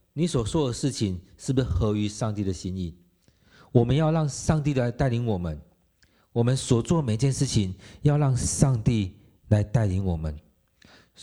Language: Chinese